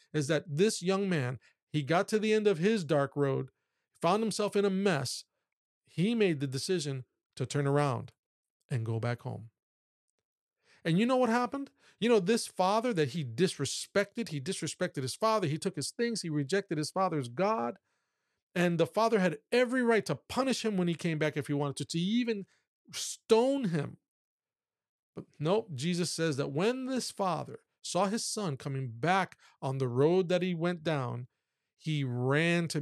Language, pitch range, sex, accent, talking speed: English, 145-210 Hz, male, American, 180 wpm